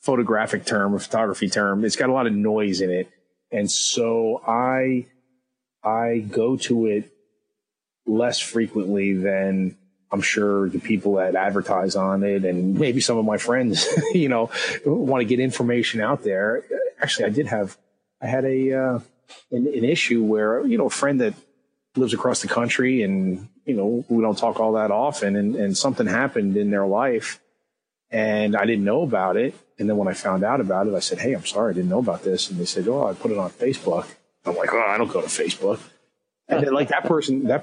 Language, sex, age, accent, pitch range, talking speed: English, male, 30-49, American, 100-130 Hz, 205 wpm